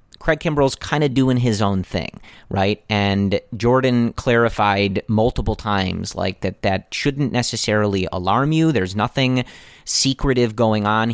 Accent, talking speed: American, 140 wpm